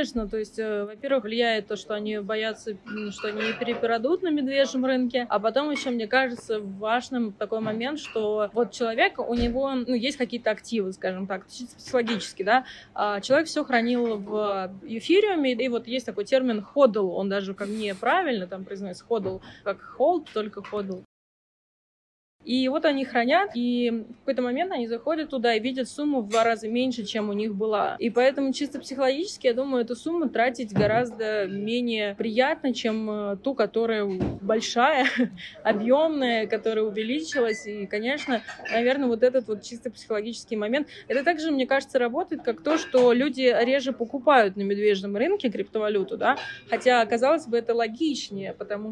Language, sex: Russian, female